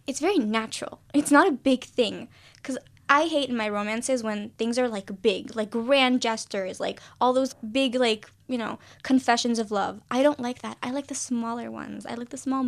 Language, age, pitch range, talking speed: English, 10-29, 210-265 Hz, 215 wpm